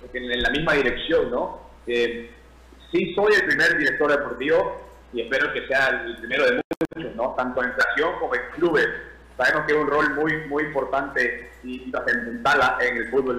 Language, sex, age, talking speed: Spanish, male, 30-49, 185 wpm